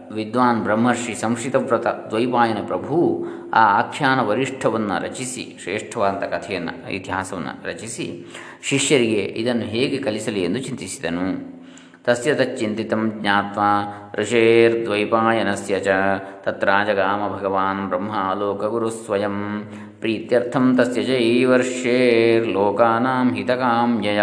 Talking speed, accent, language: 75 wpm, native, Kannada